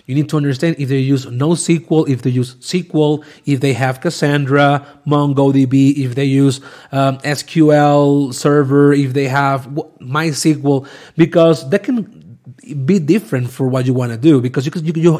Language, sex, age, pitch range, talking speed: English, male, 30-49, 140-175 Hz, 160 wpm